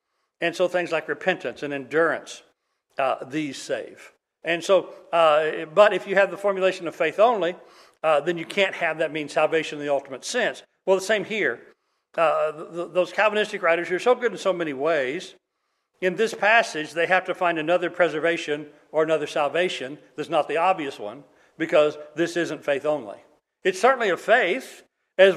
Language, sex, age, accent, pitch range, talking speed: English, male, 60-79, American, 160-200 Hz, 180 wpm